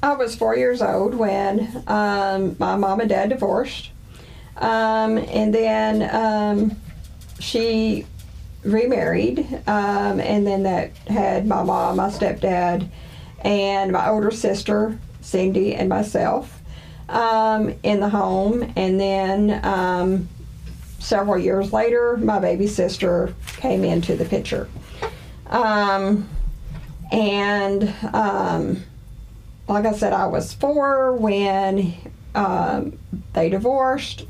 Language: English